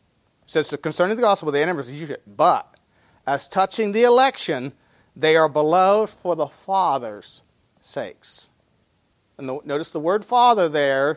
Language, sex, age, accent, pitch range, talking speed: English, male, 40-59, American, 140-200 Hz, 135 wpm